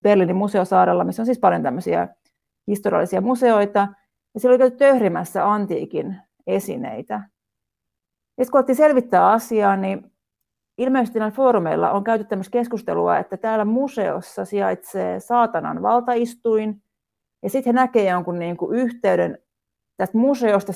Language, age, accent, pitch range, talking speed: Finnish, 30-49, native, 195-240 Hz, 120 wpm